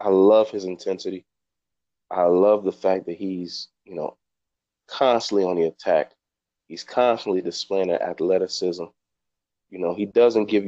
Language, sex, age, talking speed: English, male, 30-49, 145 wpm